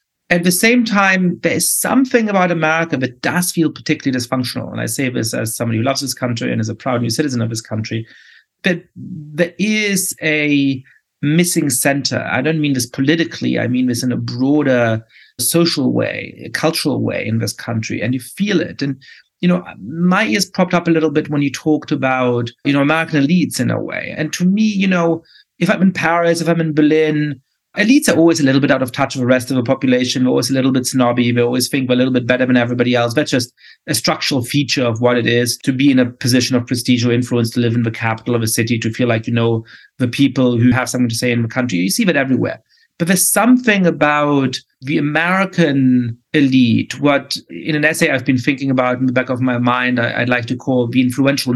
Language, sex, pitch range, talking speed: English, male, 125-160 Hz, 230 wpm